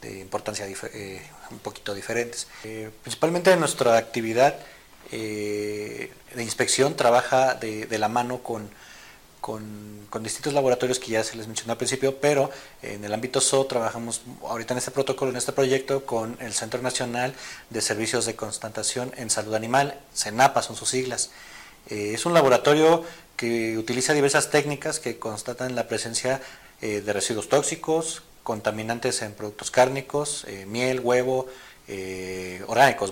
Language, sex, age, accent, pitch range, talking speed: Spanish, male, 30-49, Mexican, 110-135 Hz, 150 wpm